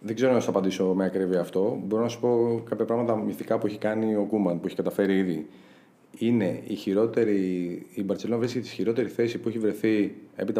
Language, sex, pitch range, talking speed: Greek, male, 95-125 Hz, 205 wpm